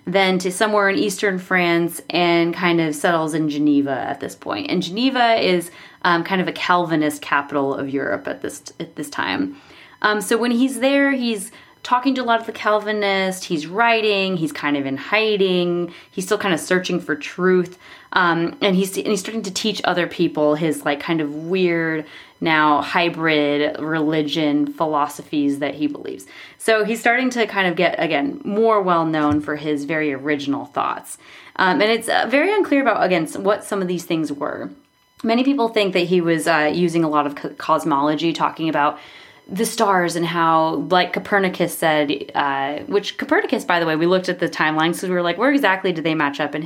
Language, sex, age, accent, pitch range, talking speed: English, female, 20-39, American, 155-205 Hz, 195 wpm